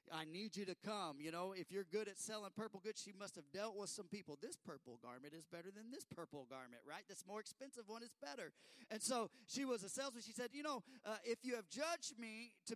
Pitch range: 140-205 Hz